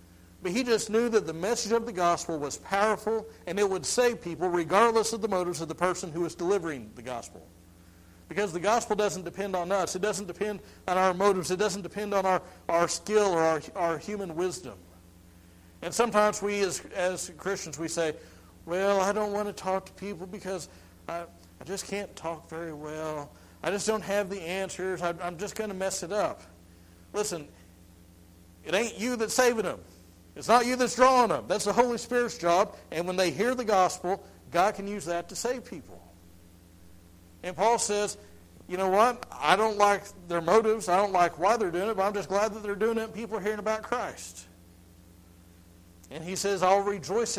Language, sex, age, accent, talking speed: English, male, 60-79, American, 200 wpm